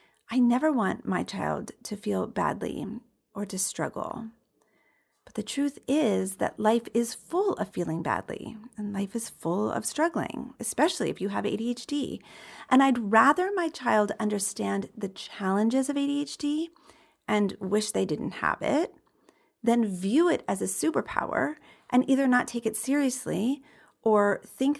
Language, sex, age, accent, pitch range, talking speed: English, female, 40-59, American, 200-270 Hz, 150 wpm